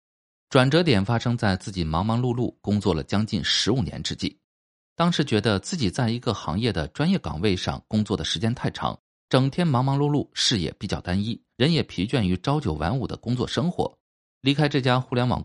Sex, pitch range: male, 90-140 Hz